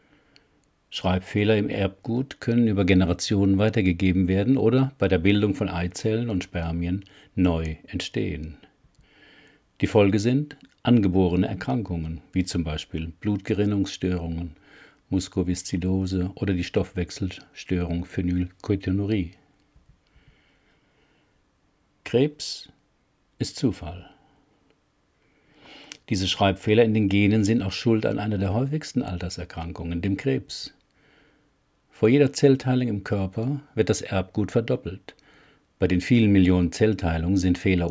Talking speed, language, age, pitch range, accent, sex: 105 wpm, German, 50-69, 90-120 Hz, German, male